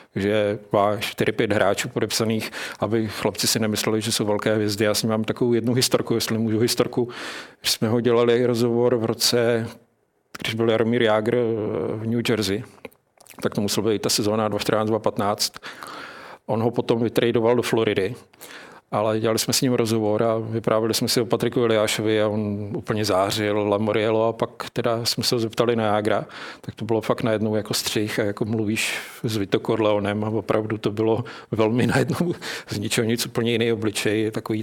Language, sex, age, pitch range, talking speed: Czech, male, 50-69, 110-120 Hz, 180 wpm